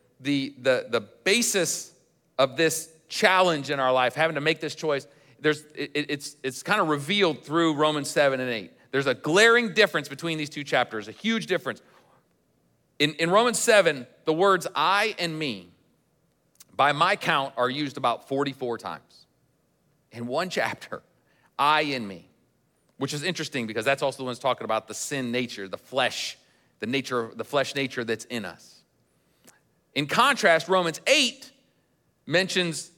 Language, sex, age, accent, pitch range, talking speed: English, male, 40-59, American, 135-175 Hz, 160 wpm